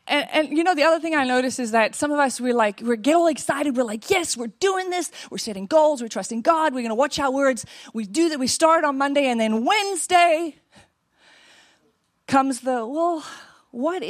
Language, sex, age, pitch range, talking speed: English, female, 30-49, 235-305 Hz, 220 wpm